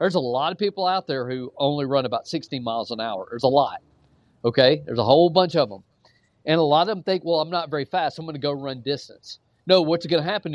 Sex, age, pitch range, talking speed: male, 40-59, 120-170 Hz, 275 wpm